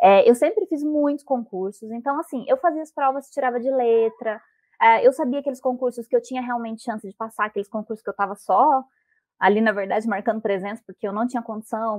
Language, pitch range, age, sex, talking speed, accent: Portuguese, 205-300 Hz, 20-39, female, 215 wpm, Brazilian